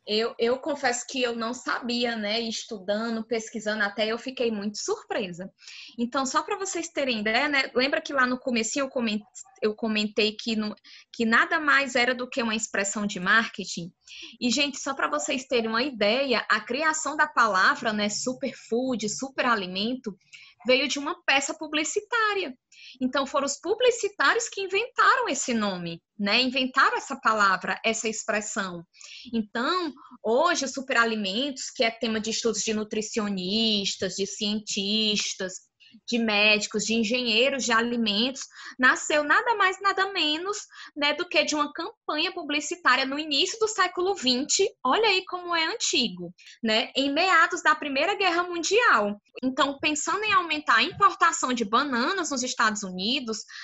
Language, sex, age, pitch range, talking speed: Portuguese, female, 20-39, 225-315 Hz, 150 wpm